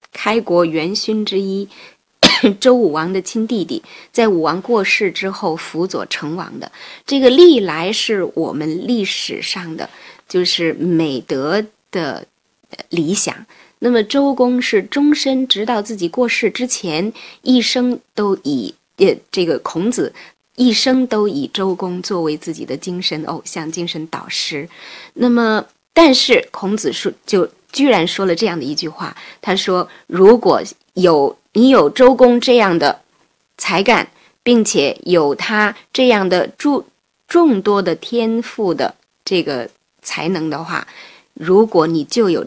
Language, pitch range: Chinese, 175-245 Hz